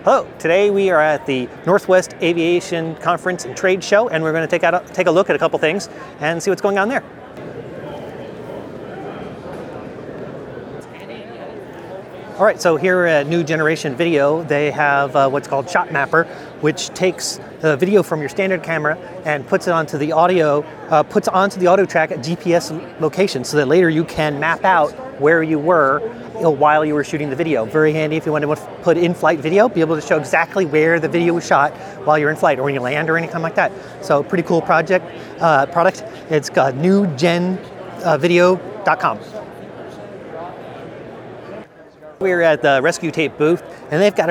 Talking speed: 180 wpm